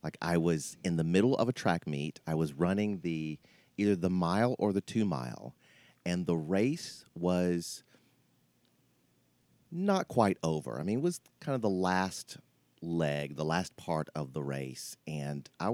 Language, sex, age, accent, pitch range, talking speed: English, male, 40-59, American, 80-115 Hz, 170 wpm